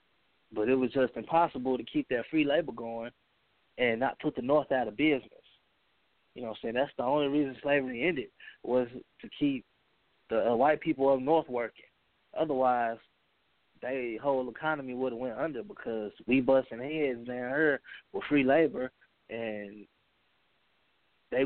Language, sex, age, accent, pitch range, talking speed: English, male, 20-39, American, 125-150 Hz, 160 wpm